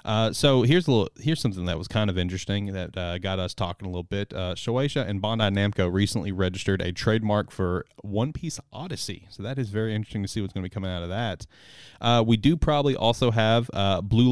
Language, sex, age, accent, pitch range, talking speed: English, male, 30-49, American, 100-125 Hz, 235 wpm